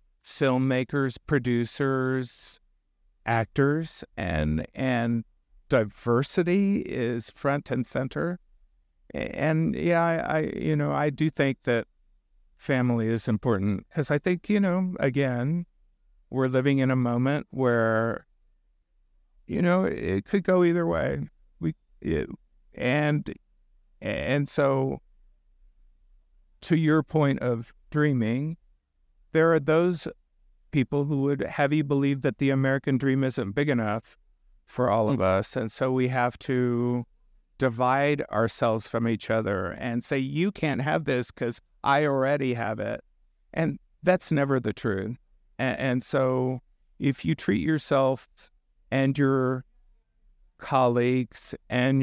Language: English